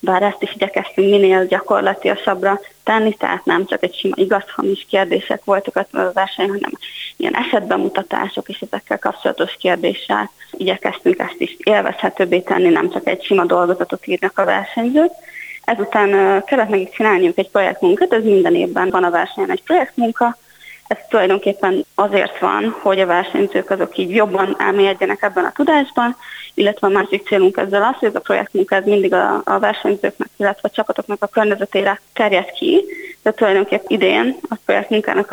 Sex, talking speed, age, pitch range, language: female, 160 wpm, 20-39, 190-235 Hz, Hungarian